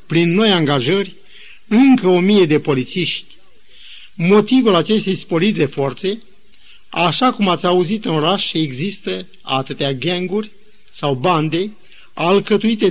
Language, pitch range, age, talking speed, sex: Romanian, 165-210 Hz, 50-69, 120 wpm, male